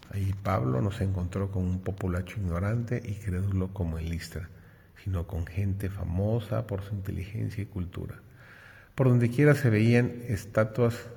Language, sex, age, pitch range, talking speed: Spanish, male, 40-59, 100-120 Hz, 155 wpm